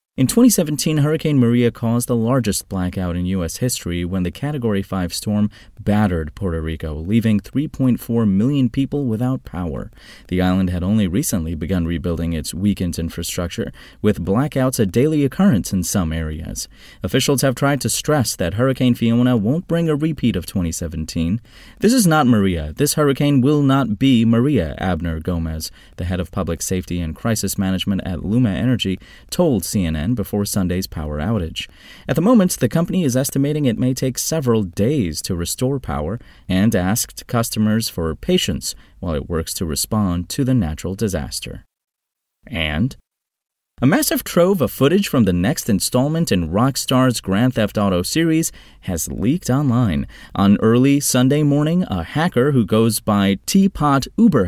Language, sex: English, male